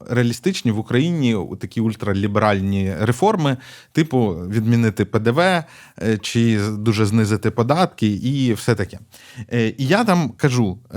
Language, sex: Ukrainian, male